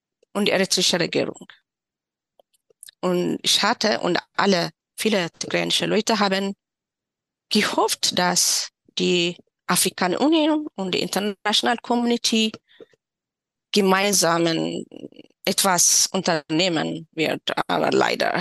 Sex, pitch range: female, 190-250 Hz